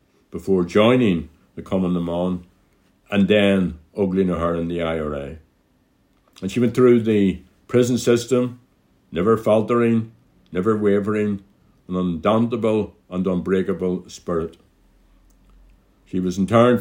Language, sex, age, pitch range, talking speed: English, male, 60-79, 90-115 Hz, 105 wpm